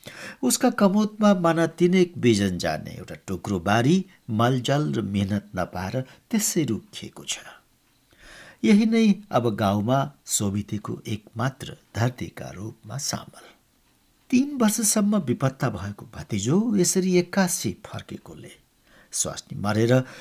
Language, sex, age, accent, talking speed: English, male, 60-79, Indian, 125 wpm